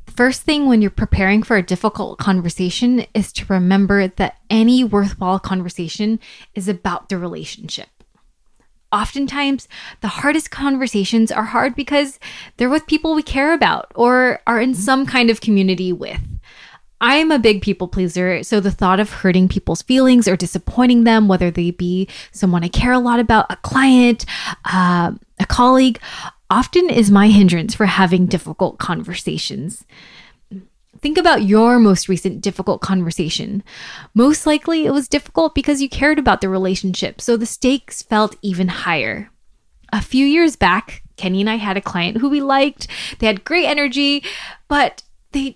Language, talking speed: English, 160 wpm